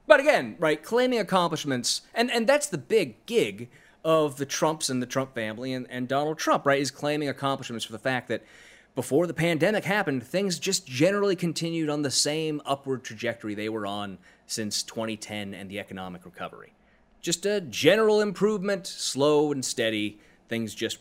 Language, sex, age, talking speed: English, male, 30-49, 175 wpm